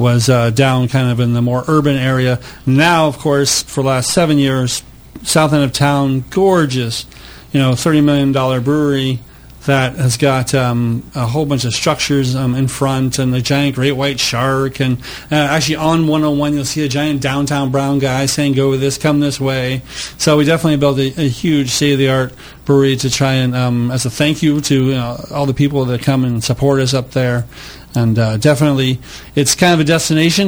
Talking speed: 205 wpm